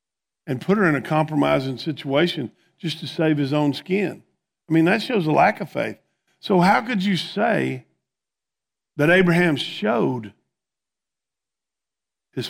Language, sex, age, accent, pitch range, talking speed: English, male, 50-69, American, 125-170 Hz, 145 wpm